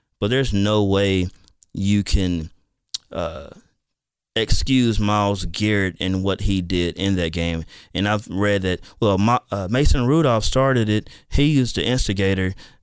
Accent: American